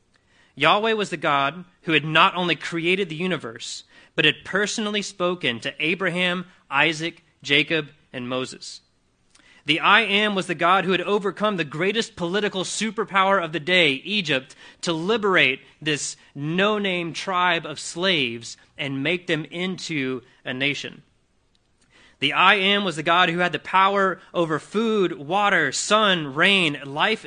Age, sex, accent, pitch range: 30-49, male, American, 150-195 Hz